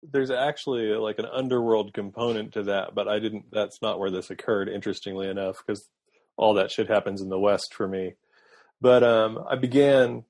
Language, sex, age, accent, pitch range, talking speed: English, male, 30-49, American, 95-115 Hz, 185 wpm